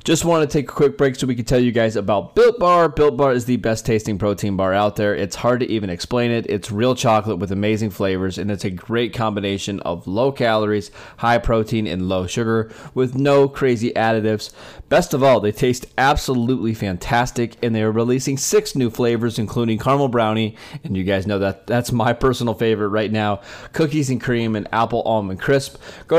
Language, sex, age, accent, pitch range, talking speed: English, male, 20-39, American, 105-135 Hz, 210 wpm